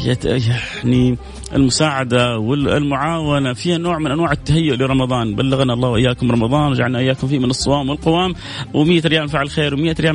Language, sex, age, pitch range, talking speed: English, male, 30-49, 135-165 Hz, 150 wpm